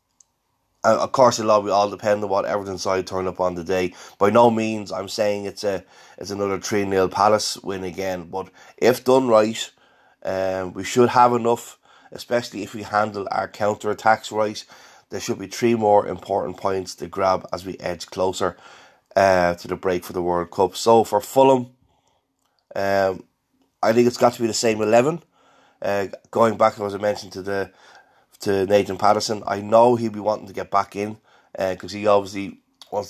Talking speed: 195 wpm